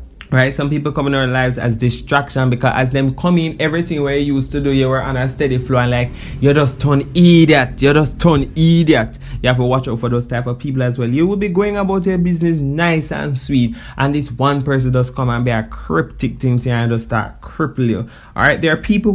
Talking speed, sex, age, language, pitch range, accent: 250 wpm, male, 20-39, English, 120-170 Hz, Jamaican